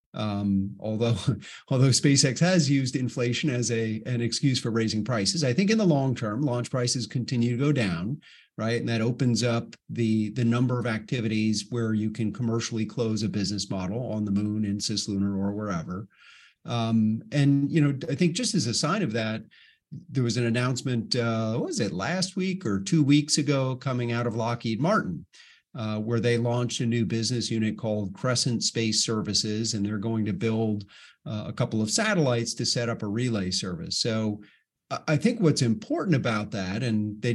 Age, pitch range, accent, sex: 40-59, 110-135 Hz, American, male